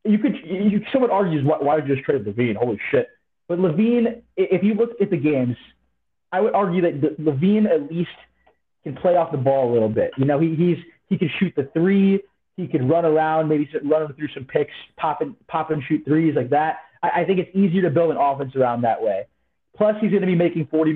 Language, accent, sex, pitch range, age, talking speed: English, American, male, 130-180 Hz, 30-49, 230 wpm